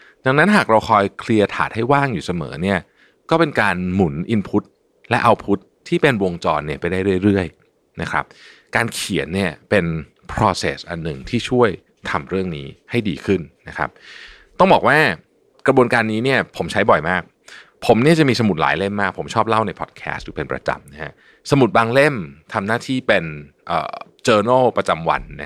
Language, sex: Thai, male